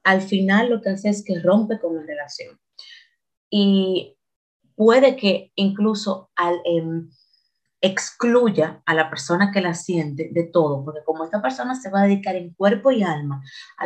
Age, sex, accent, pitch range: 30-49, female, American, 160-200 Hz